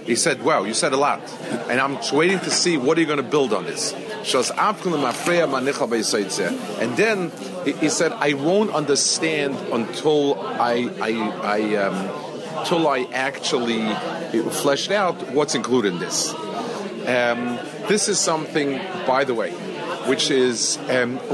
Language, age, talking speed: English, 40-59, 145 wpm